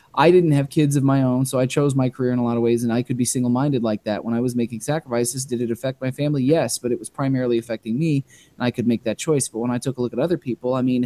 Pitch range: 125-150 Hz